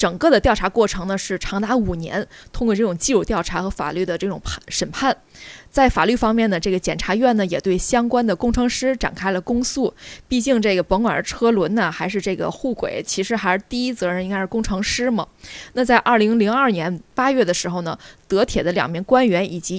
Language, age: Chinese, 20-39